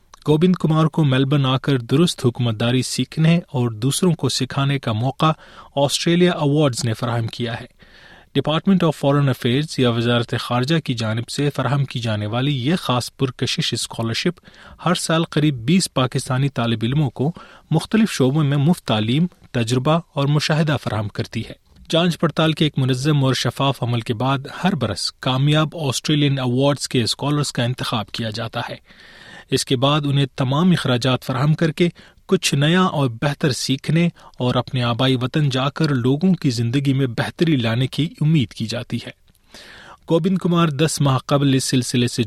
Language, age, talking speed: Urdu, 30-49, 170 wpm